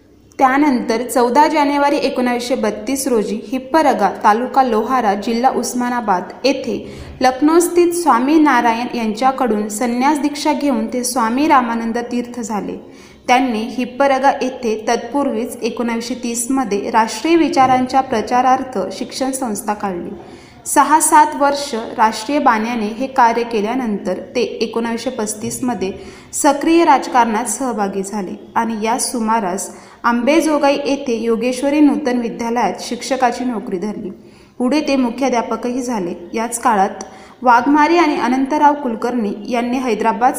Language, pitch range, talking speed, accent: Marathi, 225-270 Hz, 110 wpm, native